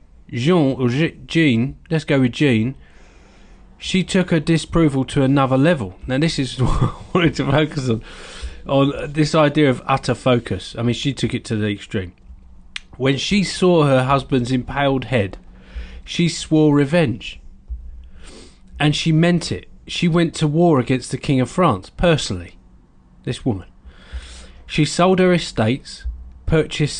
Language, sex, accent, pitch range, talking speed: English, male, British, 110-155 Hz, 150 wpm